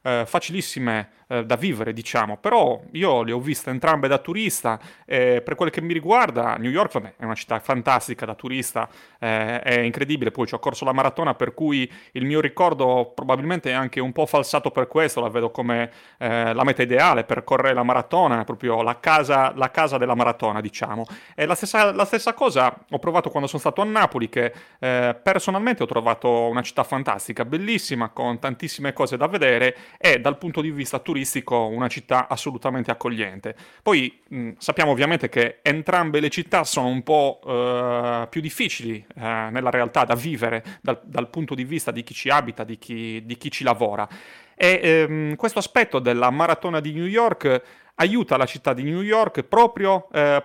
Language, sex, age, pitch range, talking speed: Italian, male, 30-49, 120-160 Hz, 185 wpm